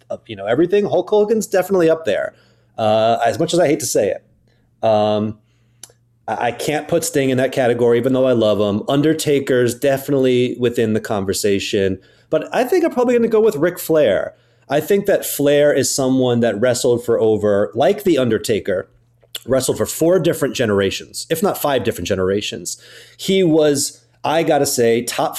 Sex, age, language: male, 30-49, English